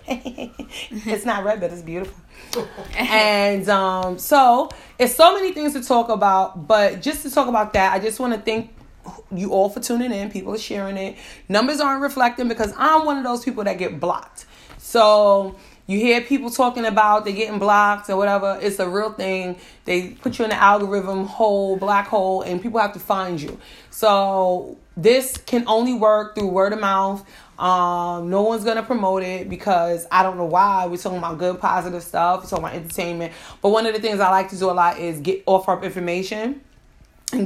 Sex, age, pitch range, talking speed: female, 30-49, 185-235 Hz, 200 wpm